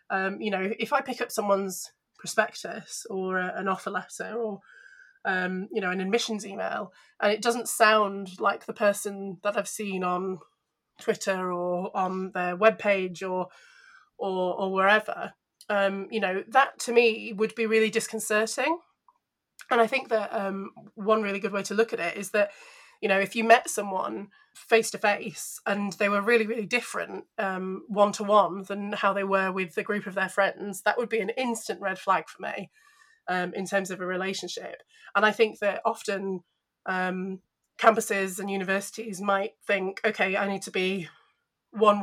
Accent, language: British, English